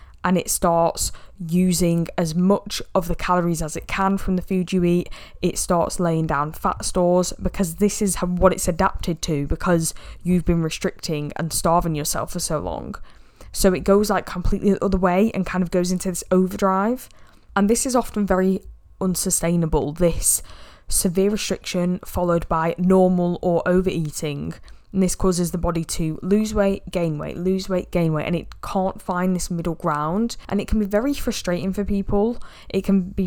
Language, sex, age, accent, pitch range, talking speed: English, female, 10-29, British, 165-190 Hz, 180 wpm